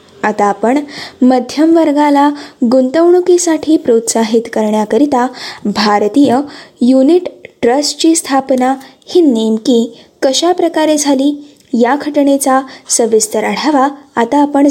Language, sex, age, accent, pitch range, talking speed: Marathi, female, 20-39, native, 235-295 Hz, 80 wpm